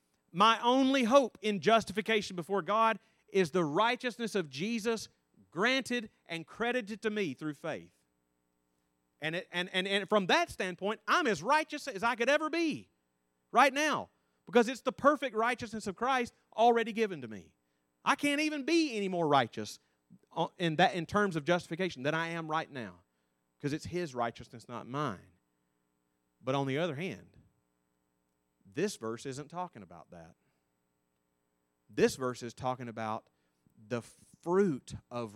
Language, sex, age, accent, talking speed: English, male, 30-49, American, 155 wpm